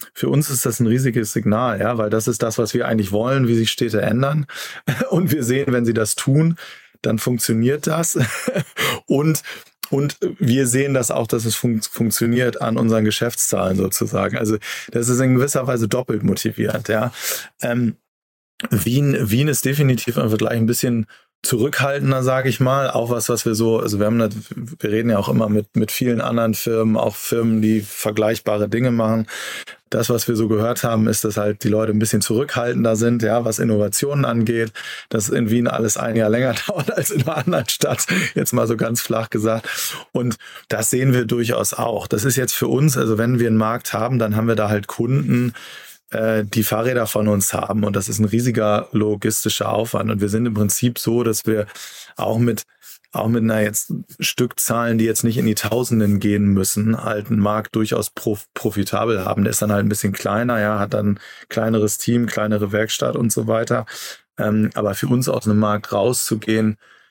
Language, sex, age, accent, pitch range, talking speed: German, male, 20-39, German, 110-120 Hz, 195 wpm